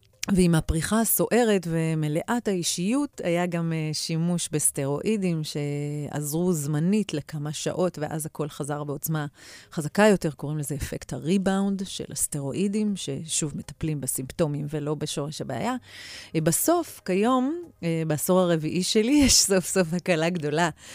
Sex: female